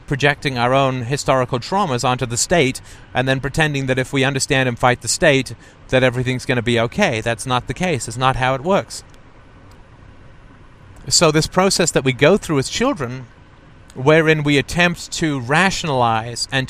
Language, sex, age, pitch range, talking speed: English, male, 40-59, 115-145 Hz, 175 wpm